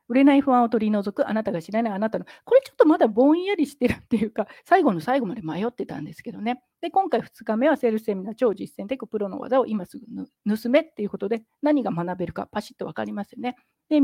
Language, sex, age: Japanese, female, 40-59